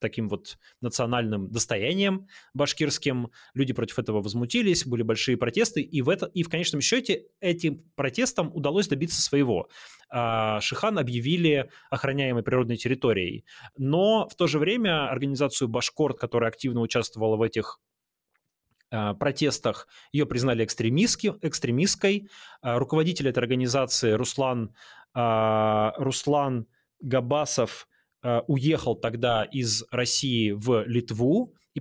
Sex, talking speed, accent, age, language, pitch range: male, 105 wpm, native, 20-39, Russian, 120-160 Hz